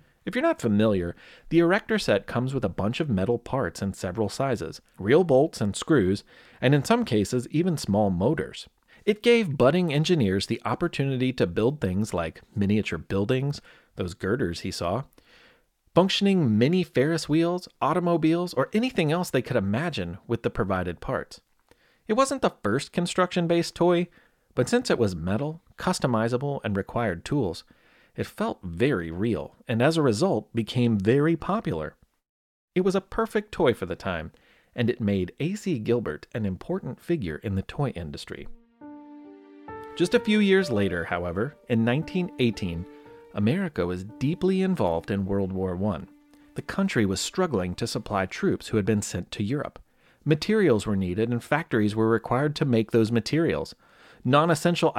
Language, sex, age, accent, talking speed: English, male, 30-49, American, 160 wpm